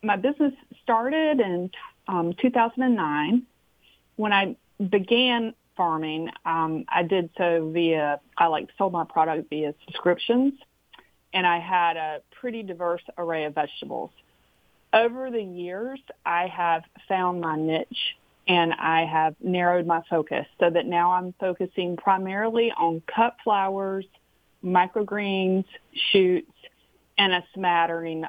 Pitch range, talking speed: 165-205 Hz, 125 wpm